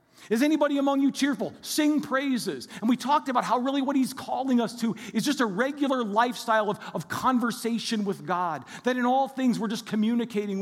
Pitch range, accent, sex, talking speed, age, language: 170-225 Hz, American, male, 200 wpm, 40-59, English